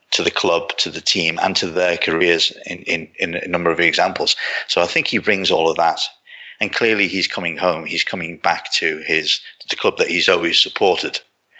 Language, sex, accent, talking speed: English, male, British, 215 wpm